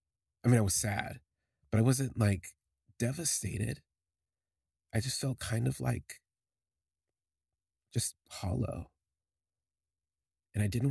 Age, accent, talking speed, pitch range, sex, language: 30-49, American, 115 wpm, 80-115 Hz, male, English